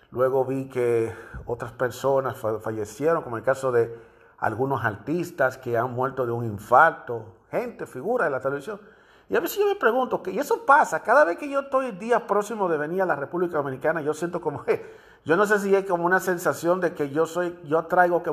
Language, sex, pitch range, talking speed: Spanish, male, 130-210 Hz, 215 wpm